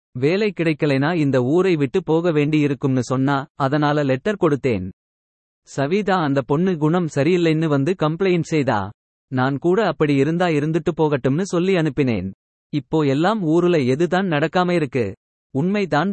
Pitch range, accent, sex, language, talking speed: 135-175 Hz, native, male, Tamil, 125 wpm